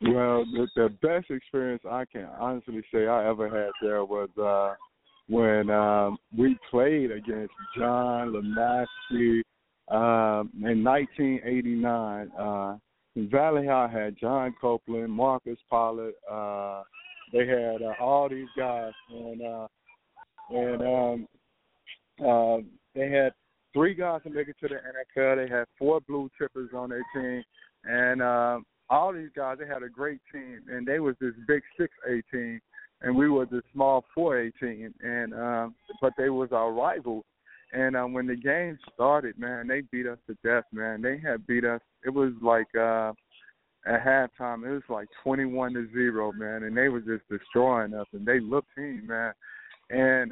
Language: English